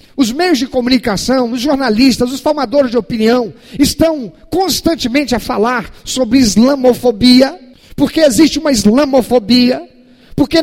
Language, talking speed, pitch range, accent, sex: Portuguese, 120 wpm, 235-290 Hz, Brazilian, male